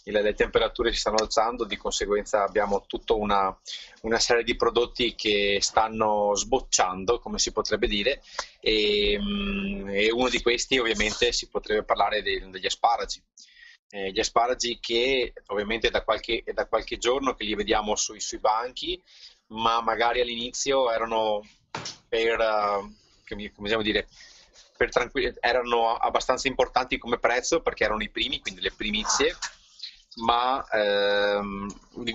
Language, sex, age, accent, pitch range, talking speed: Italian, male, 30-49, native, 105-140 Hz, 140 wpm